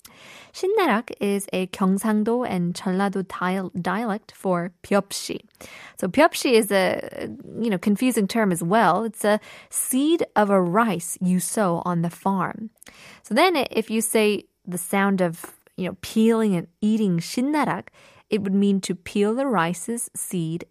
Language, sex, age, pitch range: Korean, female, 20-39, 185-255 Hz